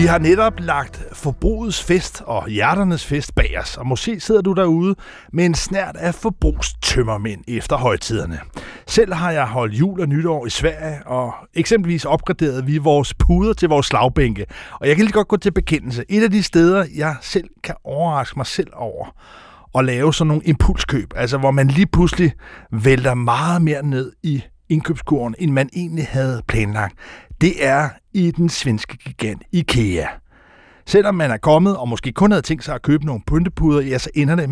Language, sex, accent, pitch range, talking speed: Danish, male, native, 130-175 Hz, 185 wpm